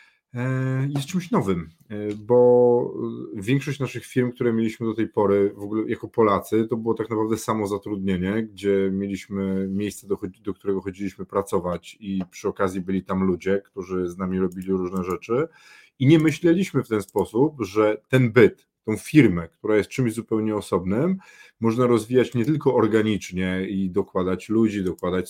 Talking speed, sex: 155 wpm, male